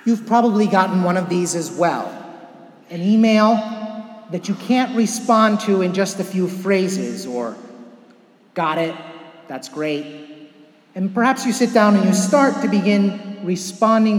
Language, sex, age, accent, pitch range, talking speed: English, male, 30-49, American, 170-225 Hz, 150 wpm